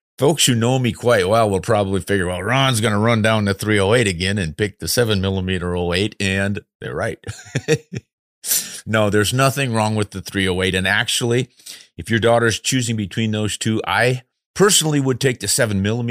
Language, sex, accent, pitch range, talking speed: English, male, American, 90-115 Hz, 180 wpm